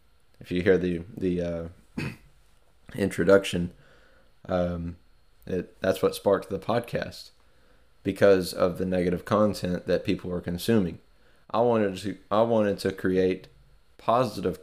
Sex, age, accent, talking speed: male, 20-39, American, 125 wpm